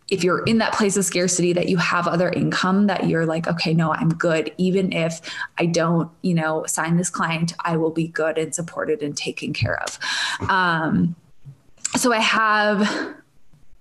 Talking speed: 185 wpm